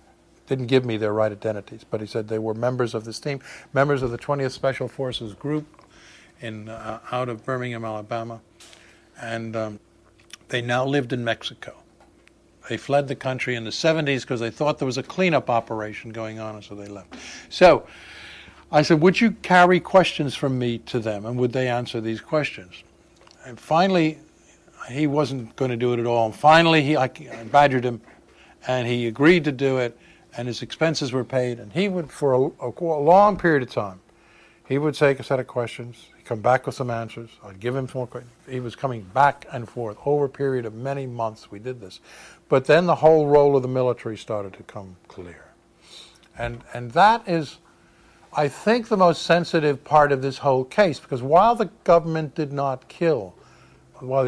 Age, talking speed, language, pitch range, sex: 60-79, 195 wpm, English, 115-150 Hz, male